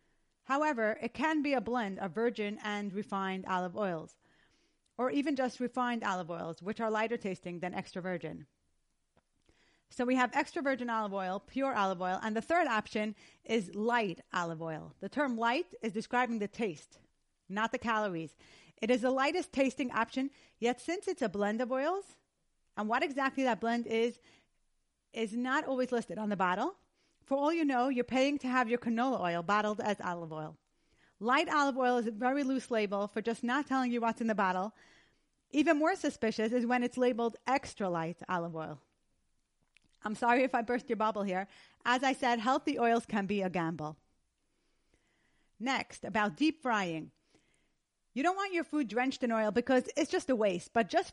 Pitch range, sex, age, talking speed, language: 200-260 Hz, female, 30-49, 185 wpm, English